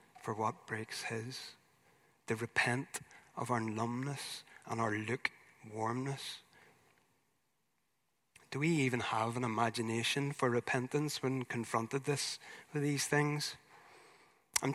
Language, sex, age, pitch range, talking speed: English, male, 30-49, 115-140 Hz, 110 wpm